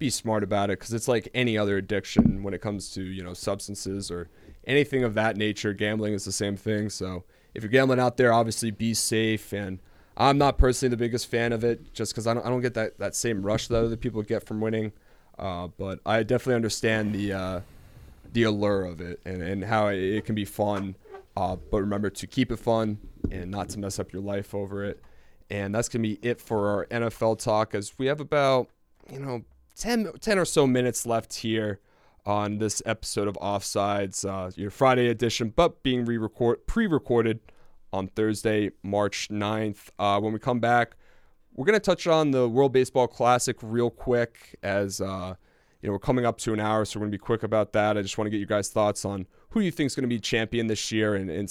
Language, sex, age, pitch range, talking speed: English, male, 20-39, 100-120 Hz, 225 wpm